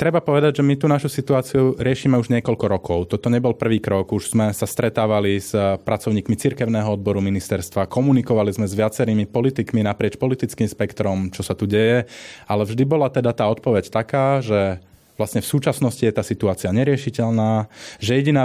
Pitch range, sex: 110-130 Hz, male